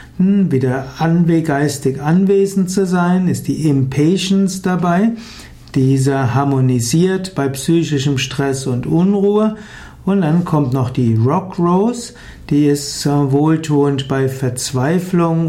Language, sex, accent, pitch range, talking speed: German, male, German, 140-180 Hz, 110 wpm